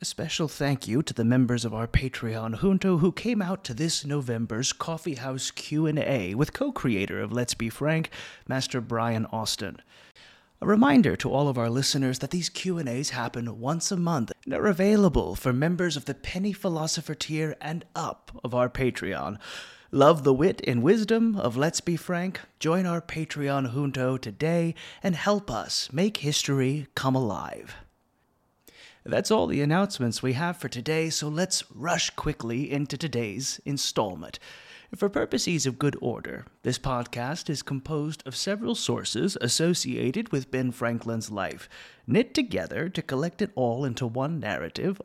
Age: 30-49